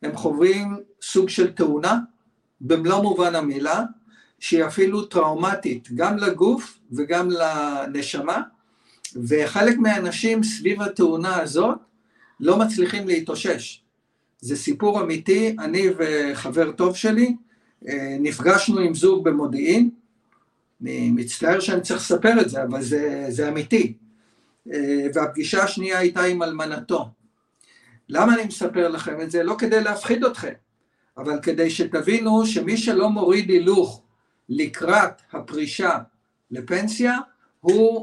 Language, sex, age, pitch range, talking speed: Hebrew, male, 50-69, 155-225 Hz, 110 wpm